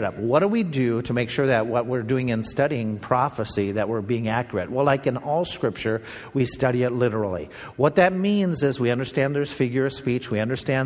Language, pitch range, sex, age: English, 120-145 Hz, male, 50-69